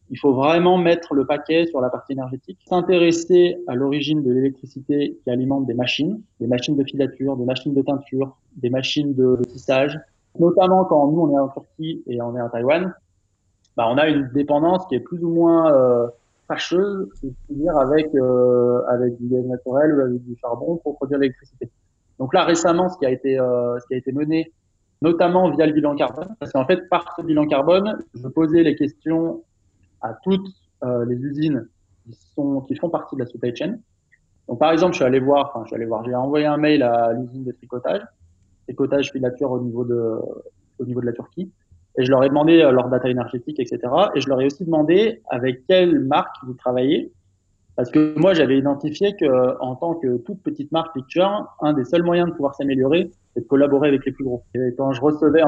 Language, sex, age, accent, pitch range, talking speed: English, male, 20-39, French, 125-160 Hz, 210 wpm